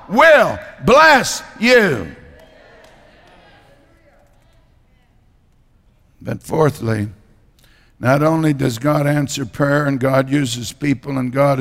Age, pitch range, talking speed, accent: 60-79, 120-155 Hz, 90 wpm, American